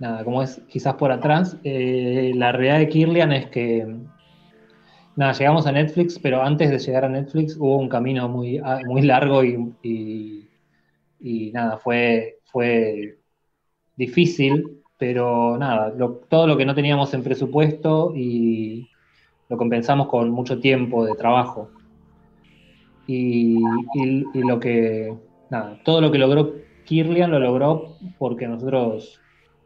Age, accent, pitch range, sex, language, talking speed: 20-39, Argentinian, 115-140 Hz, male, Spanish, 140 wpm